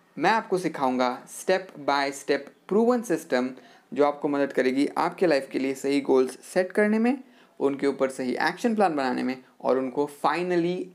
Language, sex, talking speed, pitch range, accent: Hindi, male, 170 wpm, 140-190 Hz, native